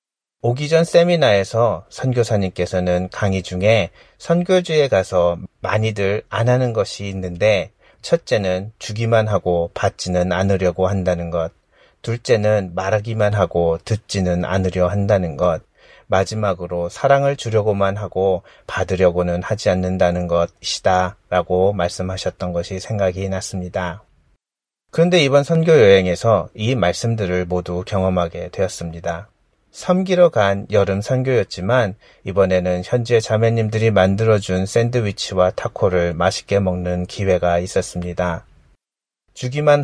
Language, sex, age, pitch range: Korean, male, 40-59, 90-110 Hz